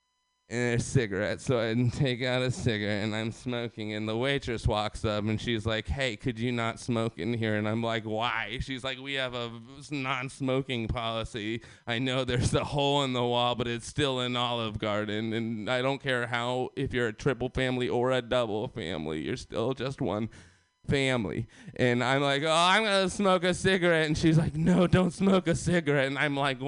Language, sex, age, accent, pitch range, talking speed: English, male, 20-39, American, 120-160 Hz, 200 wpm